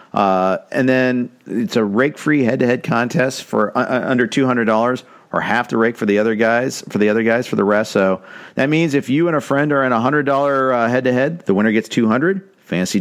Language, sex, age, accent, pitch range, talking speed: English, male, 50-69, American, 100-130 Hz, 235 wpm